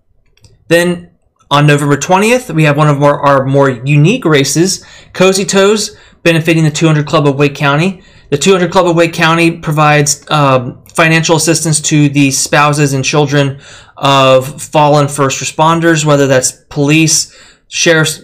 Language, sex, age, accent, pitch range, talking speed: English, male, 20-39, American, 135-160 Hz, 150 wpm